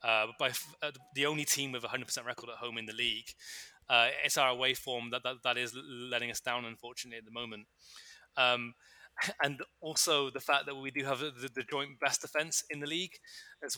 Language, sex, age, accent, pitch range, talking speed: English, male, 20-39, British, 125-145 Hz, 210 wpm